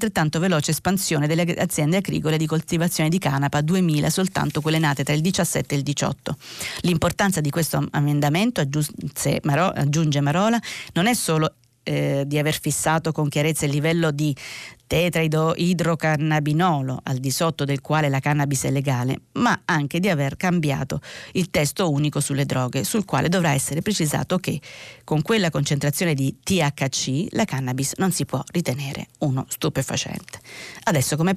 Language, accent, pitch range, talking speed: Italian, native, 140-170 Hz, 150 wpm